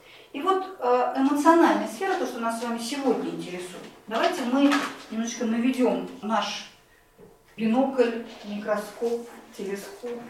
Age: 40-59